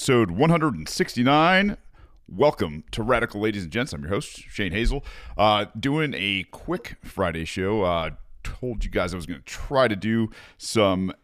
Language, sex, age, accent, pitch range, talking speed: English, male, 40-59, American, 85-110 Hz, 170 wpm